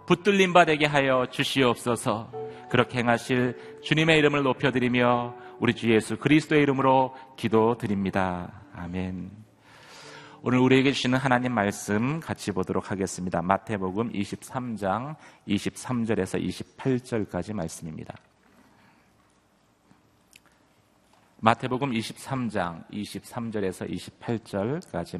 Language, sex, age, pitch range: Korean, male, 40-59, 100-125 Hz